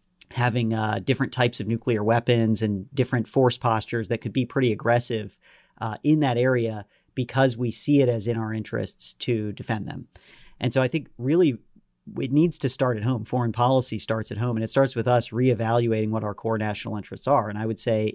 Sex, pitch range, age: male, 110-125 Hz, 40-59